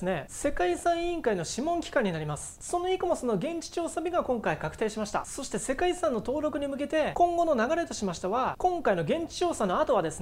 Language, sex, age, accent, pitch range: Japanese, male, 30-49, native, 215-335 Hz